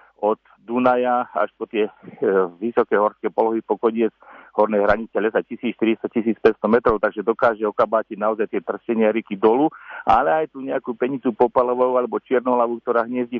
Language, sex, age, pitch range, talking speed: Slovak, male, 50-69, 110-125 Hz, 150 wpm